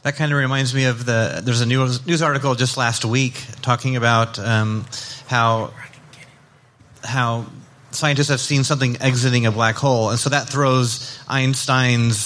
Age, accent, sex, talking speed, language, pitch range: 30-49, American, male, 160 wpm, English, 120-140 Hz